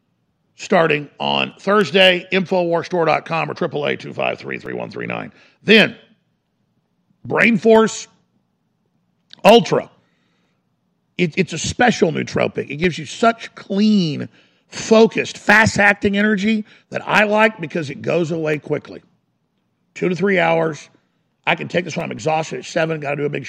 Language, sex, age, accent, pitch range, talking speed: English, male, 50-69, American, 155-205 Hz, 135 wpm